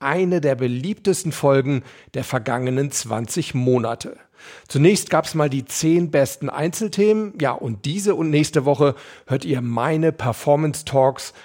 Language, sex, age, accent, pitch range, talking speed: German, male, 40-59, German, 130-160 Hz, 135 wpm